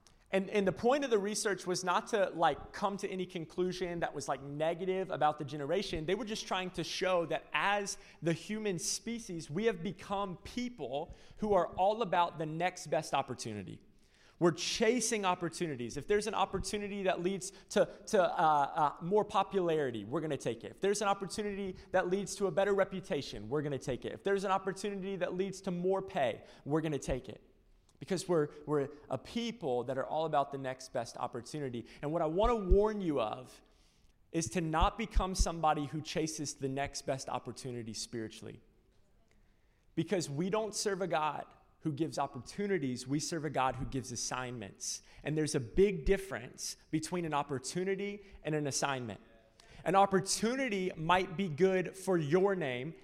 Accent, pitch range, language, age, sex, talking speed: American, 145-195 Hz, English, 30-49, male, 185 wpm